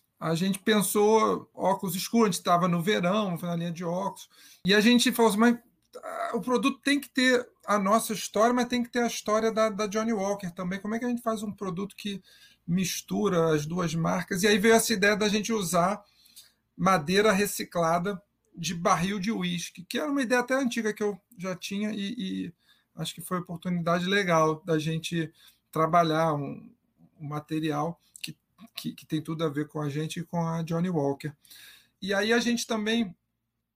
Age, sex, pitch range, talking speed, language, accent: 40-59, male, 165-215 Hz, 190 wpm, Portuguese, Brazilian